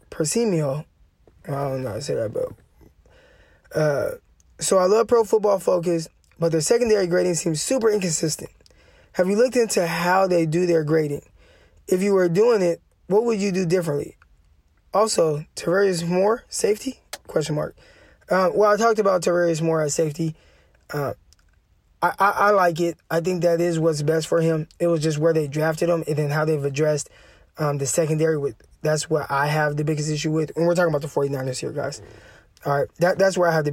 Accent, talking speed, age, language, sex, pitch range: American, 195 wpm, 20-39, English, male, 155-185 Hz